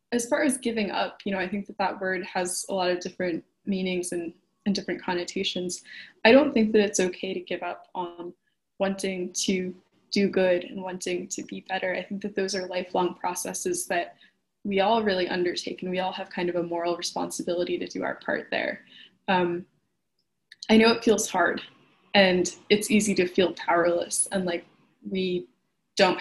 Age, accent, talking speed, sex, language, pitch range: 10-29, American, 190 wpm, female, English, 180-200 Hz